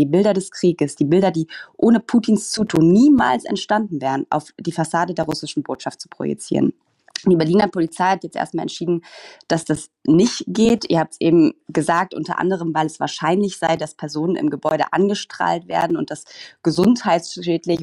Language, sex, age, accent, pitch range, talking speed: German, female, 20-39, German, 150-175 Hz, 175 wpm